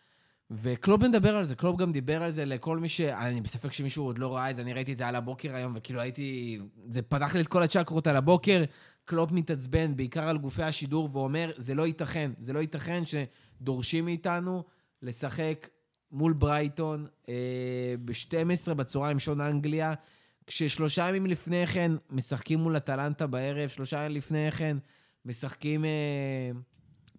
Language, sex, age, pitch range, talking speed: Hebrew, male, 20-39, 135-170 Hz, 165 wpm